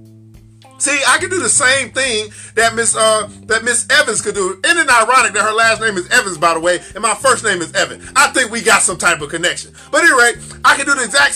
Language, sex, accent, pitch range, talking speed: English, male, American, 220-285 Hz, 255 wpm